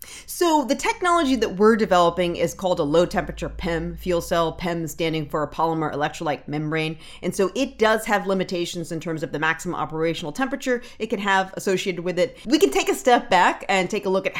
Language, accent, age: English, American, 40-59